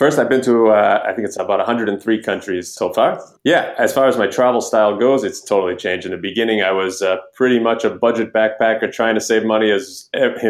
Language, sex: English, male